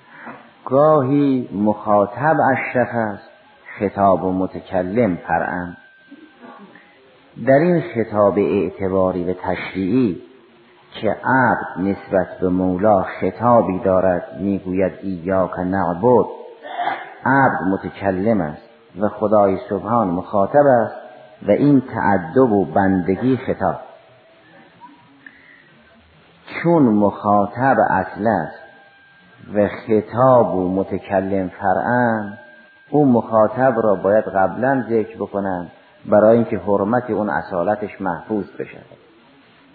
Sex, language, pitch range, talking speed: male, Persian, 95-120 Hz, 95 wpm